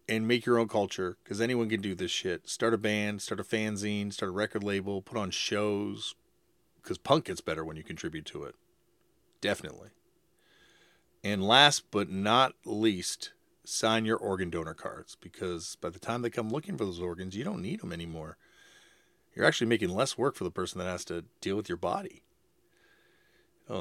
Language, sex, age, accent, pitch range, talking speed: English, male, 40-59, American, 95-130 Hz, 190 wpm